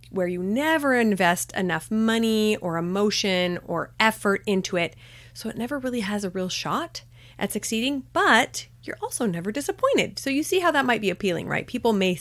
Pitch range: 165-225 Hz